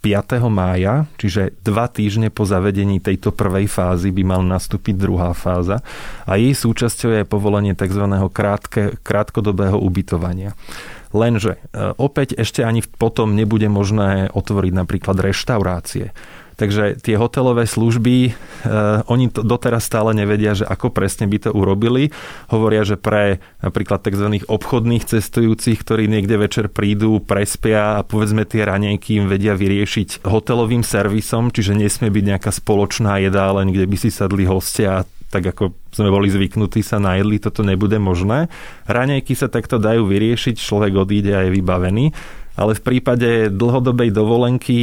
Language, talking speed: Slovak, 140 wpm